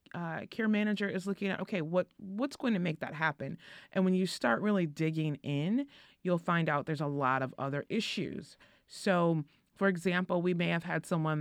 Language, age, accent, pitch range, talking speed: English, 30-49, American, 150-185 Hz, 200 wpm